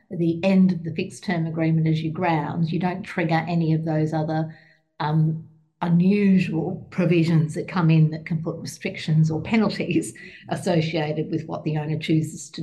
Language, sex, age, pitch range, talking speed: English, female, 50-69, 165-205 Hz, 170 wpm